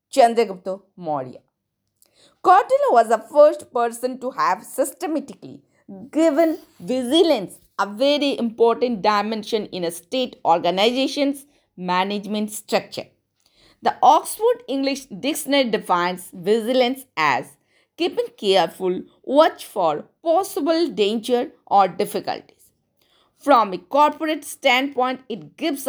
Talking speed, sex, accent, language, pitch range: 105 wpm, female, native, Hindi, 215-305 Hz